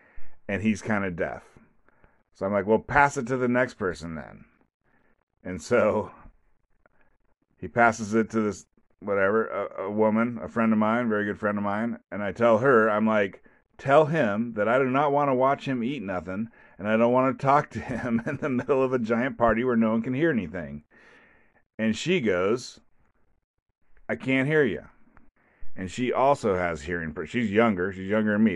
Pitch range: 105-135 Hz